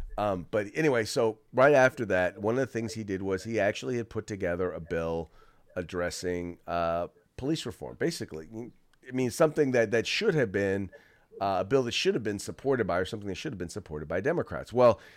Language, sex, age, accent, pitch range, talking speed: English, male, 40-59, American, 95-130 Hz, 205 wpm